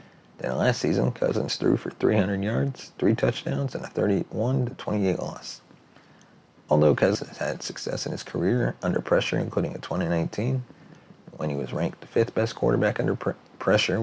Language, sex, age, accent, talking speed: English, male, 40-59, American, 150 wpm